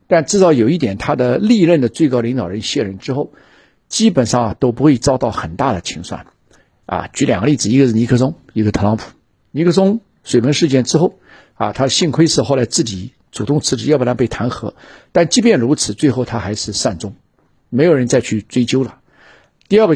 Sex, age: male, 50-69